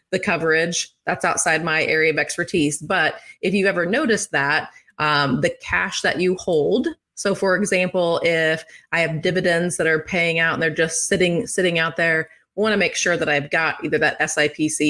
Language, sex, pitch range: English, female, 155-195 Hz